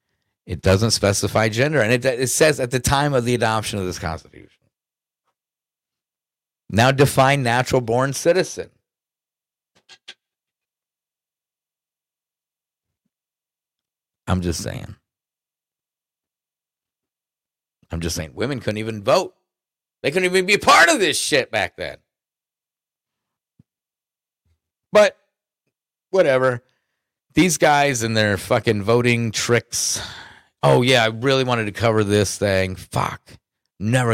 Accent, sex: American, male